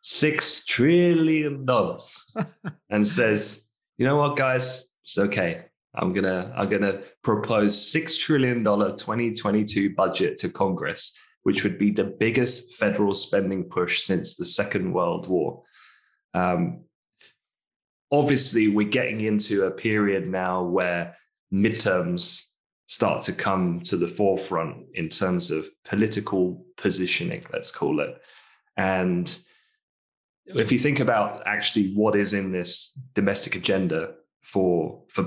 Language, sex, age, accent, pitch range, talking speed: English, male, 20-39, British, 100-130 Hz, 130 wpm